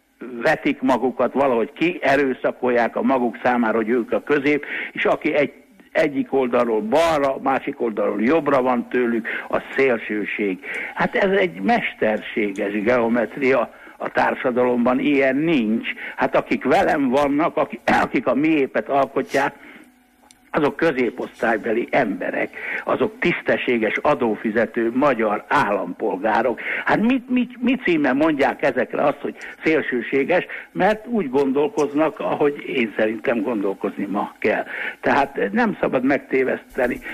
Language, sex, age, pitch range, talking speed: Hungarian, male, 60-79, 120-190 Hz, 120 wpm